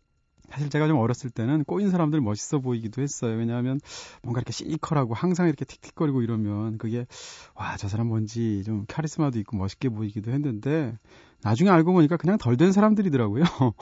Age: 30-49